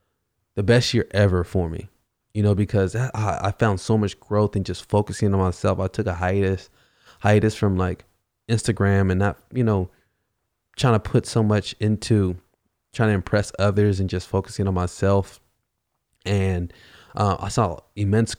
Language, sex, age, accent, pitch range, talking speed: English, male, 20-39, American, 90-110 Hz, 165 wpm